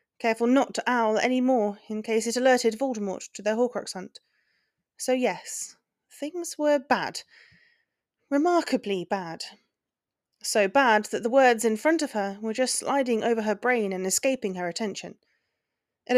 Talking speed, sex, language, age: 155 wpm, female, English, 30-49